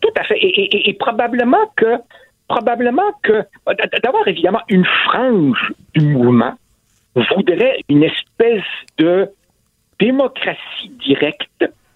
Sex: male